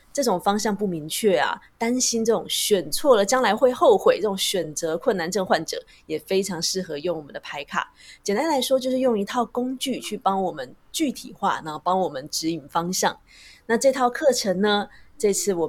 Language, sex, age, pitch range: Chinese, female, 20-39, 175-230 Hz